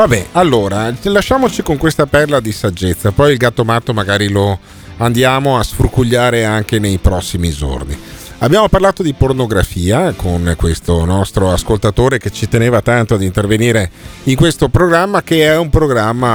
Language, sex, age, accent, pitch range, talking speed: Italian, male, 40-59, native, 95-125 Hz, 155 wpm